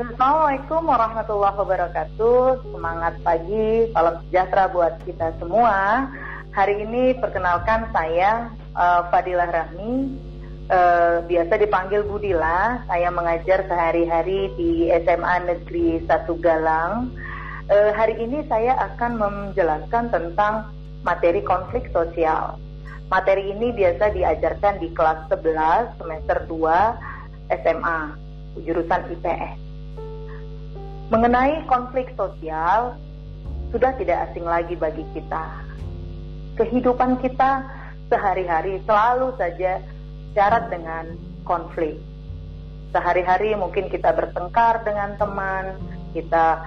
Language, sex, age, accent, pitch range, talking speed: Indonesian, female, 30-49, native, 160-210 Hz, 95 wpm